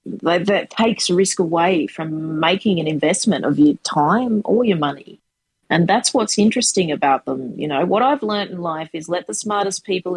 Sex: female